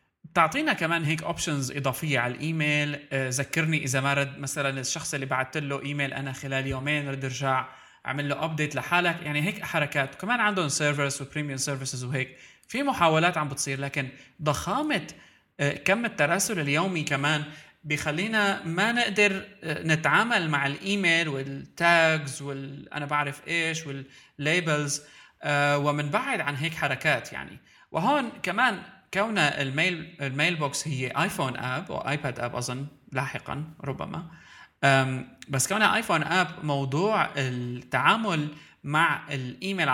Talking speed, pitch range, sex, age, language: 130 wpm, 135-165 Hz, male, 30-49, Arabic